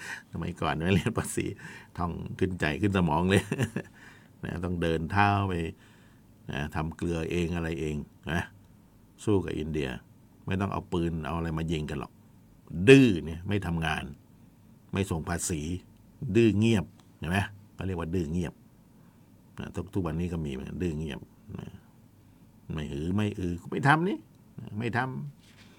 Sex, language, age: male, Thai, 60-79